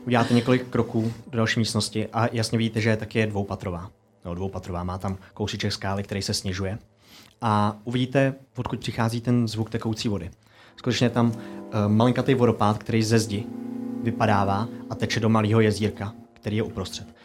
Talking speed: 170 wpm